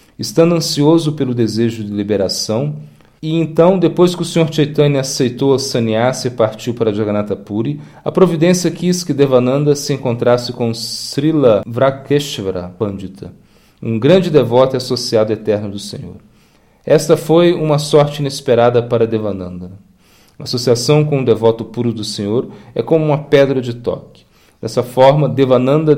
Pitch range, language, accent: 110-150 Hz, Portuguese, Brazilian